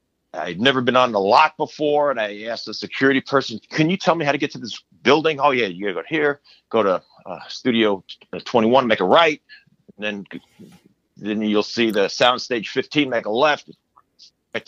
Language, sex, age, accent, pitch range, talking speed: English, male, 50-69, American, 115-155 Hz, 205 wpm